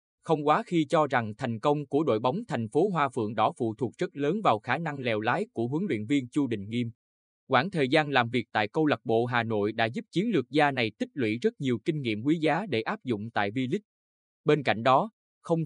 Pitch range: 115-155 Hz